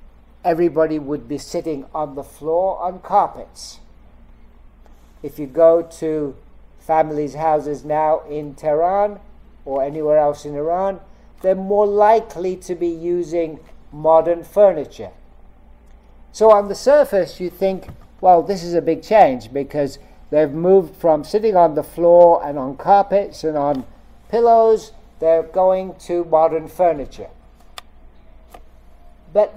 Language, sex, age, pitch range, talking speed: English, male, 60-79, 145-190 Hz, 130 wpm